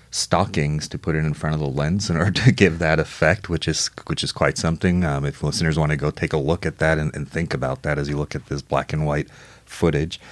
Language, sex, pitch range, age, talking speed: English, male, 75-95 Hz, 30-49, 270 wpm